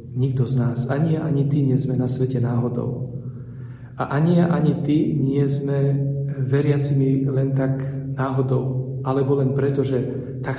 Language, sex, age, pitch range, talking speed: Slovak, male, 40-59, 125-140 Hz, 160 wpm